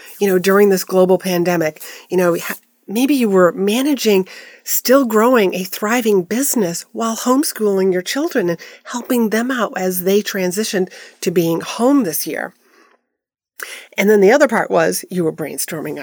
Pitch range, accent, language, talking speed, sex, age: 180-255 Hz, American, English, 155 wpm, female, 40-59